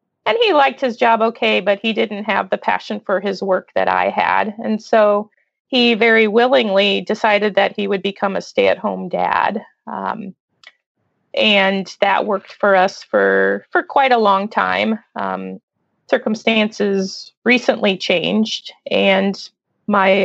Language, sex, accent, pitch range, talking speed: English, female, American, 195-230 Hz, 145 wpm